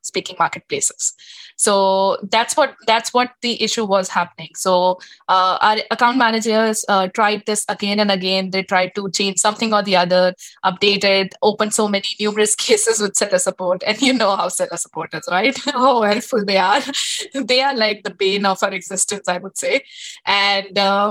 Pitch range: 190-225 Hz